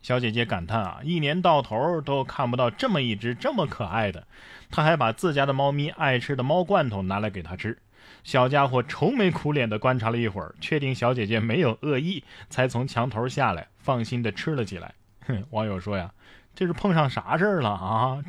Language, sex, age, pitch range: Chinese, male, 20-39, 110-165 Hz